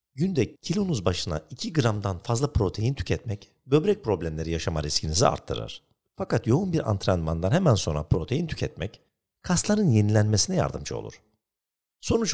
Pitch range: 85-140 Hz